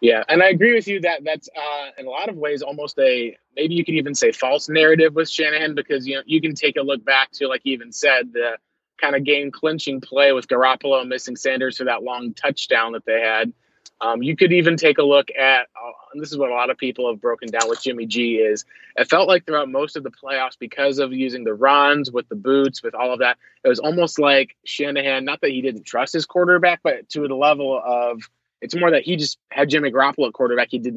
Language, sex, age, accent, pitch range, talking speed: English, male, 20-39, American, 120-150 Hz, 245 wpm